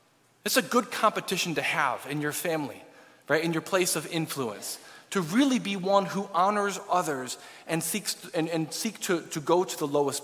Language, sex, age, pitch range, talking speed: English, male, 40-59, 155-215 Hz, 195 wpm